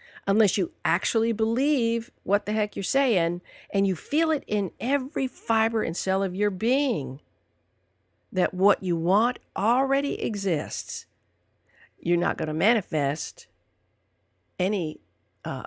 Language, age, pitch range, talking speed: English, 50-69, 155-225 Hz, 130 wpm